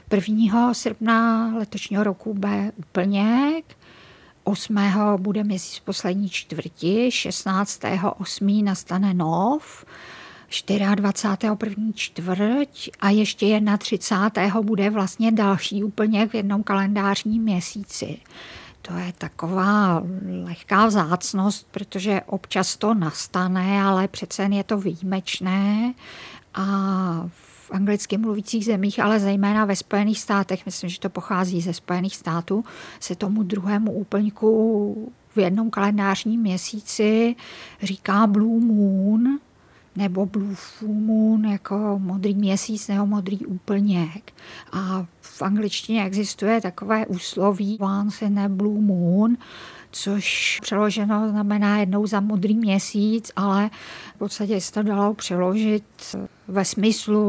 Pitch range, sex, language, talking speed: 185-210 Hz, female, Czech, 115 wpm